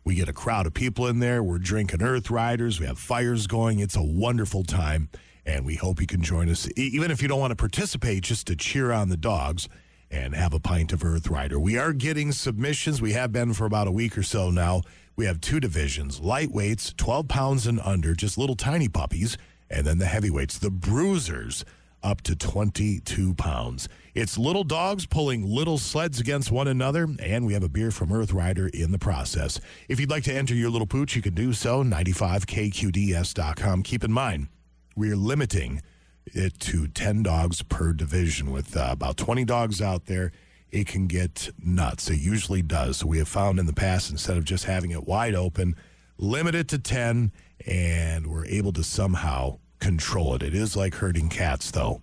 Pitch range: 85-120 Hz